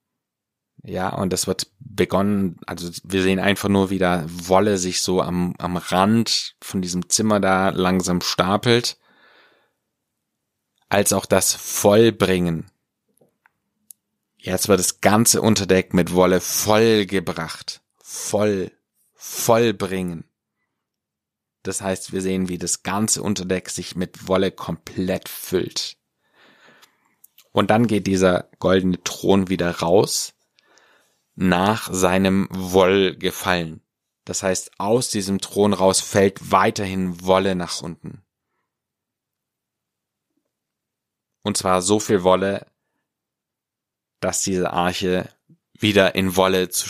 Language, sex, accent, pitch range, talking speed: German, male, German, 90-100 Hz, 110 wpm